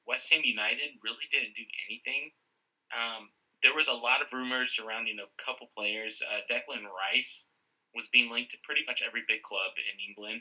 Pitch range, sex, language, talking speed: 110-130 Hz, male, English, 185 wpm